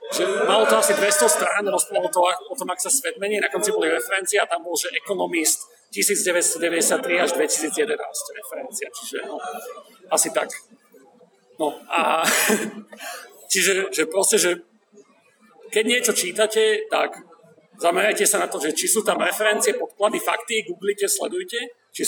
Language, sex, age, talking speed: Slovak, male, 40-59, 150 wpm